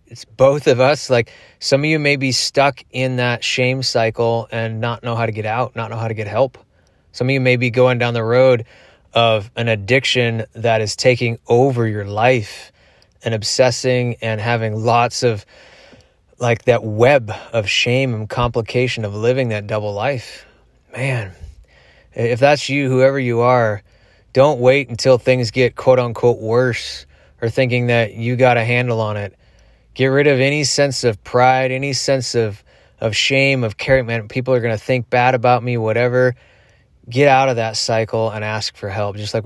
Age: 20-39